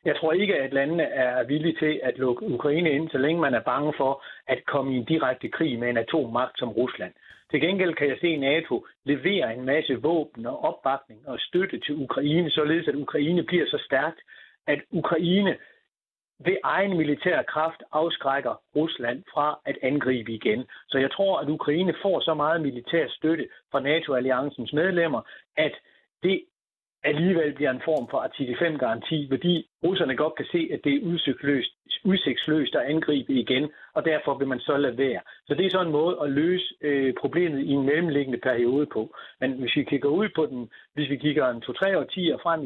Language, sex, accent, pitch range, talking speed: Danish, male, native, 135-165 Hz, 190 wpm